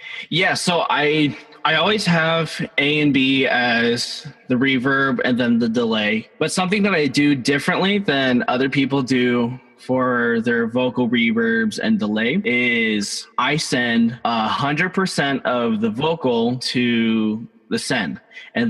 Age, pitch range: 20-39, 125-180 Hz